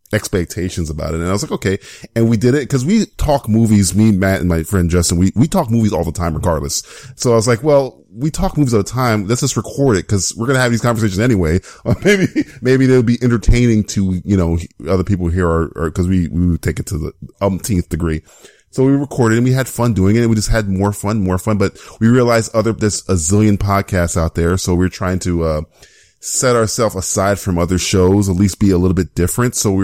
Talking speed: 245 wpm